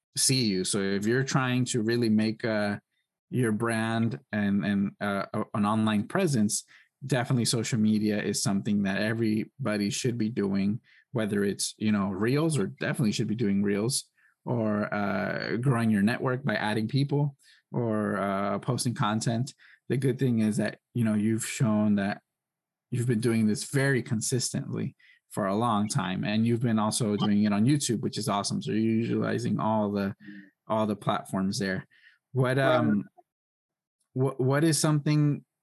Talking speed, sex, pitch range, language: 165 wpm, male, 105-130 Hz, English